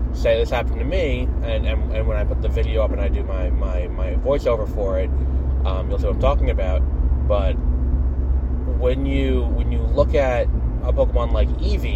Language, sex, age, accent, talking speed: English, male, 20-39, American, 205 wpm